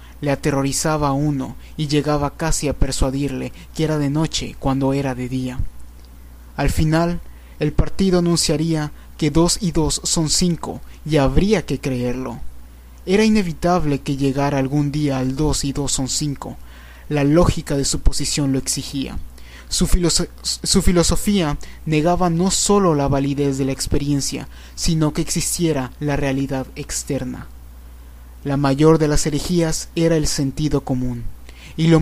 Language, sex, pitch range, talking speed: Spanish, male, 135-165 Hz, 150 wpm